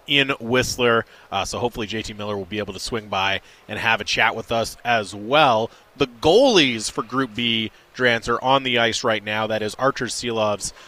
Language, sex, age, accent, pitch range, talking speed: English, male, 30-49, American, 110-135 Hz, 205 wpm